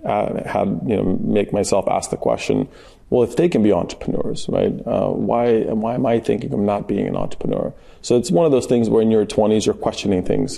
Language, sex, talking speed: English, male, 220 wpm